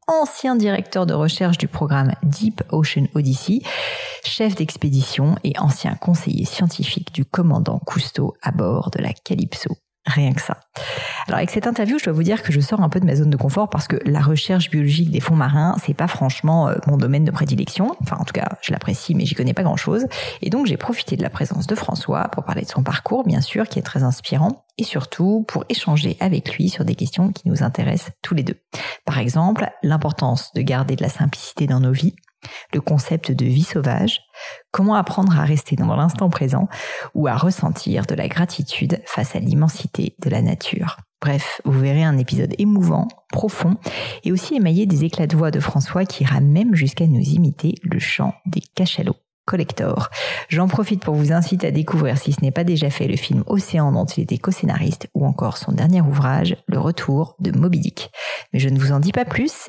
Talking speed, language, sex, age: 205 wpm, French, female, 40-59